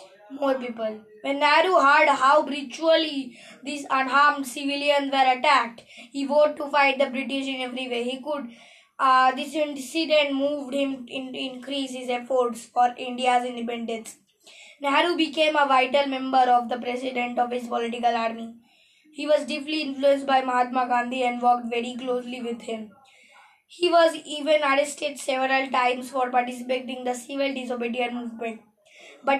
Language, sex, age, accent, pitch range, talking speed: English, female, 20-39, Indian, 250-285 Hz, 150 wpm